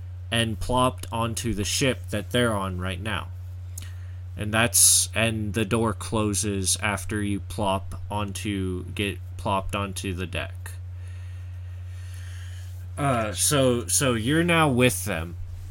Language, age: English, 20-39